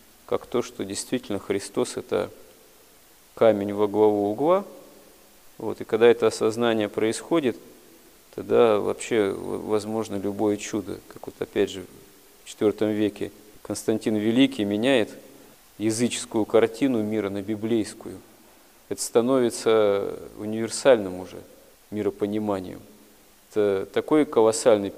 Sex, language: male, Russian